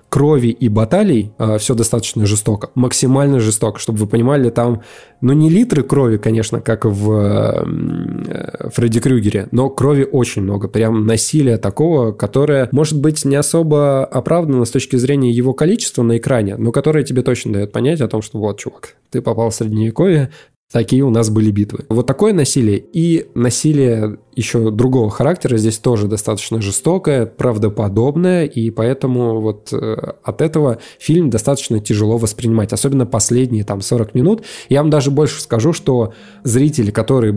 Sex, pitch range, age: male, 110-140 Hz, 20-39